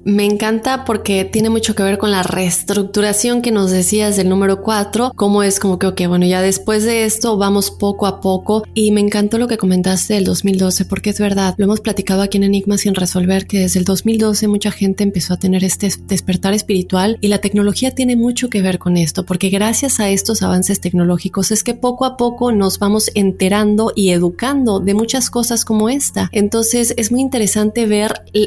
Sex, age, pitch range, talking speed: female, 30-49, 190-225 Hz, 200 wpm